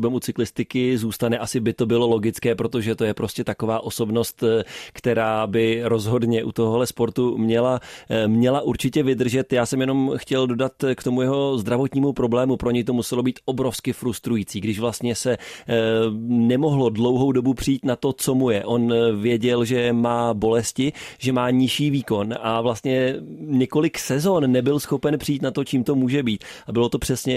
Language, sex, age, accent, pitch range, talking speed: Czech, male, 30-49, native, 120-130 Hz, 175 wpm